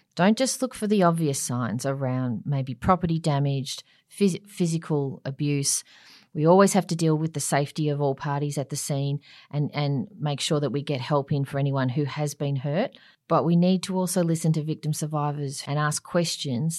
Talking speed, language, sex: 195 wpm, English, female